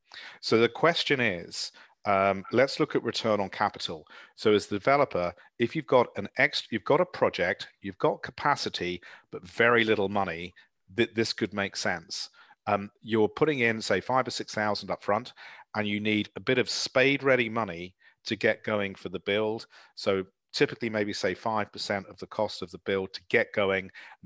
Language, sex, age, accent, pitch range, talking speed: English, male, 40-59, British, 90-110 Hz, 190 wpm